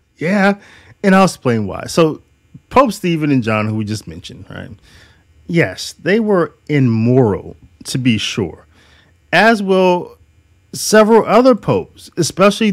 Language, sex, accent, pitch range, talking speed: English, male, American, 105-160 Hz, 130 wpm